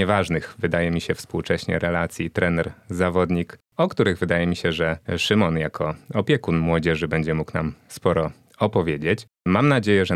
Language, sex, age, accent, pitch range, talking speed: Polish, male, 30-49, native, 85-105 Hz, 150 wpm